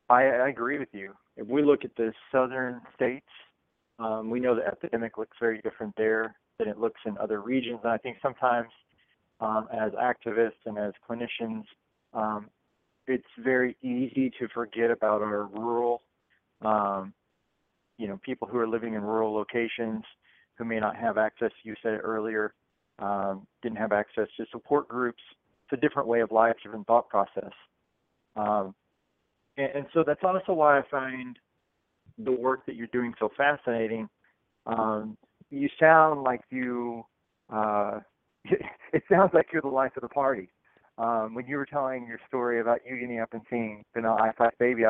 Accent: American